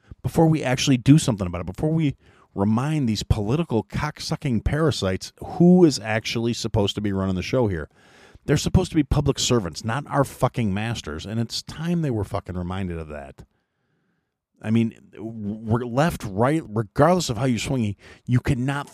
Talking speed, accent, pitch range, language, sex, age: 175 wpm, American, 105-145 Hz, English, male, 40-59